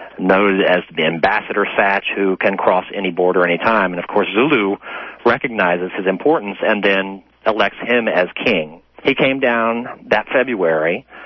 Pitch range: 90-110 Hz